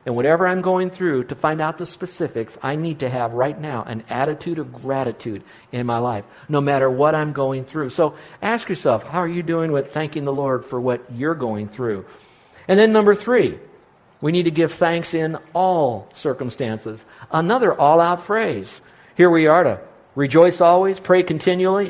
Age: 50-69